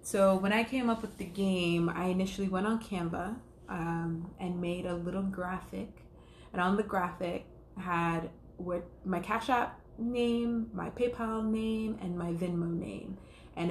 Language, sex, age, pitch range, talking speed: English, female, 20-39, 175-210 Hz, 160 wpm